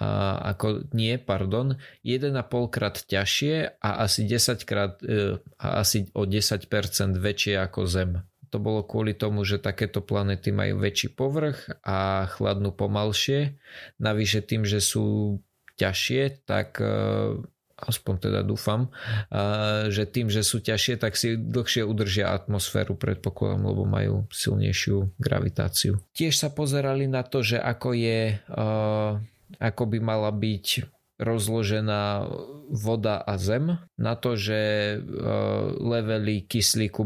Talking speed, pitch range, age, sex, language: 130 wpm, 100-120 Hz, 20-39, male, Slovak